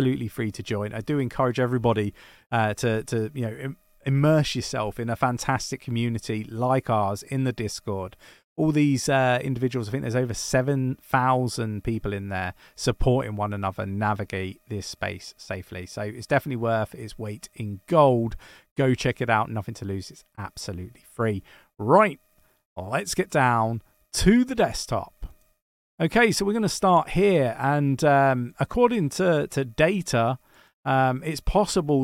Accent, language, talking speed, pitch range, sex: British, English, 155 wpm, 110-140 Hz, male